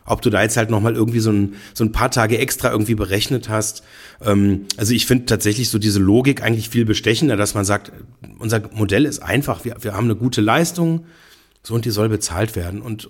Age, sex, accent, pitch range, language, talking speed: 40-59, male, German, 100-120 Hz, German, 215 wpm